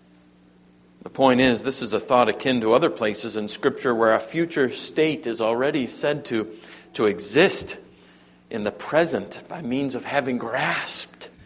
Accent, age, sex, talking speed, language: American, 50-69, male, 160 wpm, English